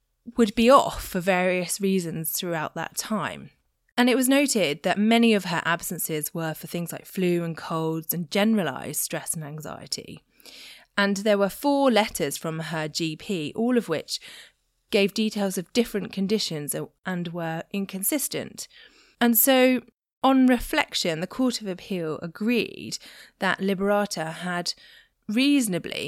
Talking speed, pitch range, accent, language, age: 145 wpm, 165-205 Hz, British, English, 20-39